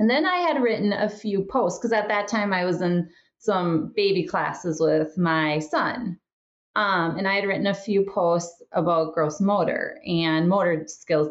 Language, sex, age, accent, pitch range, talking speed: English, female, 30-49, American, 165-210 Hz, 185 wpm